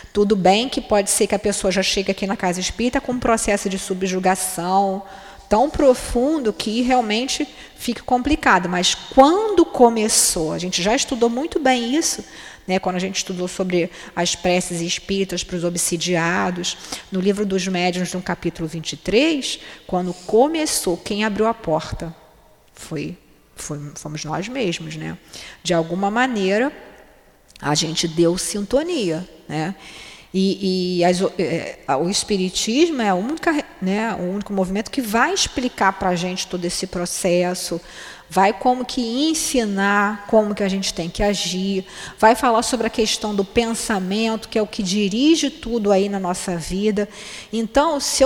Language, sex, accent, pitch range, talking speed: Portuguese, female, Brazilian, 180-235 Hz, 155 wpm